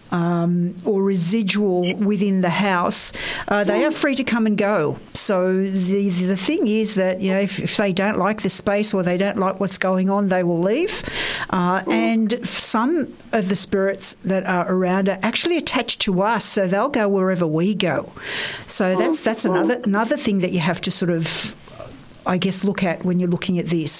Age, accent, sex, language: 50-69, Australian, female, English